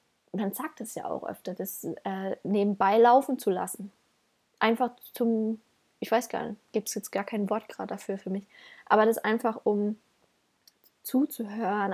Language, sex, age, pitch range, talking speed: German, female, 20-39, 200-245 Hz, 170 wpm